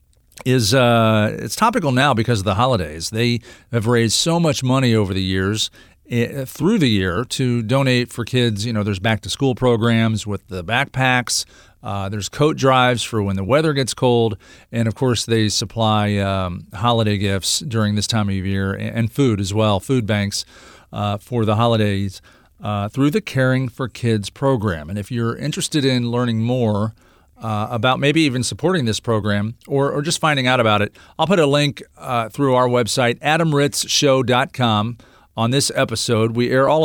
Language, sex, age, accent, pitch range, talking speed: English, male, 40-59, American, 105-130 Hz, 175 wpm